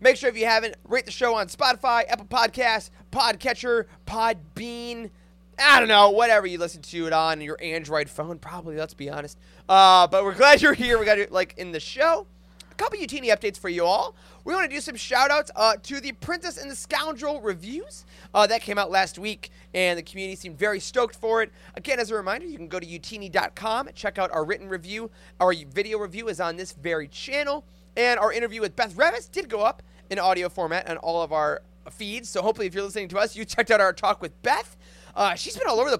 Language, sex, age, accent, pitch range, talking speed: English, male, 30-49, American, 175-245 Hz, 230 wpm